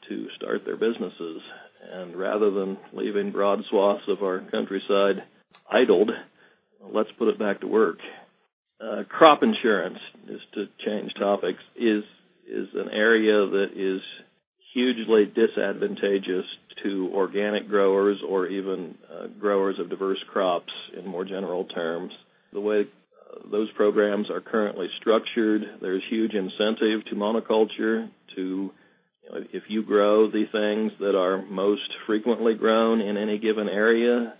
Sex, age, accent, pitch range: male, 50-69, American, 100-115 Hz